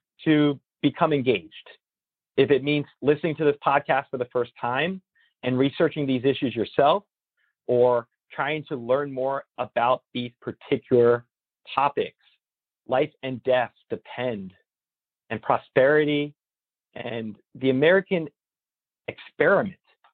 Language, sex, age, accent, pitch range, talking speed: English, male, 40-59, American, 125-170 Hz, 115 wpm